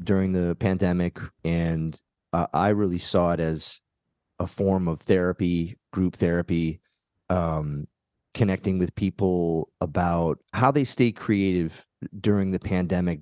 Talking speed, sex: 125 wpm, male